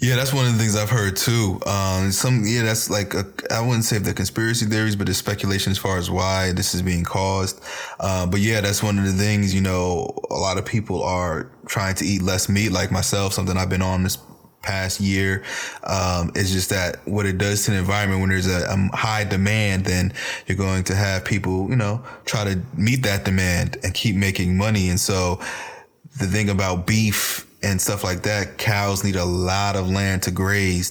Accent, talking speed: American, 215 wpm